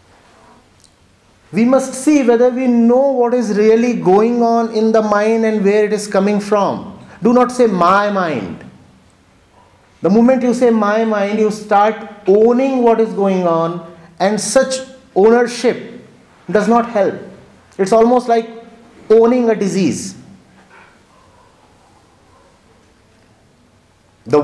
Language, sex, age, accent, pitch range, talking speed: English, male, 50-69, Indian, 180-235 Hz, 125 wpm